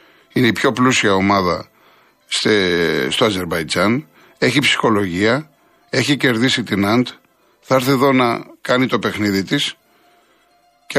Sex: male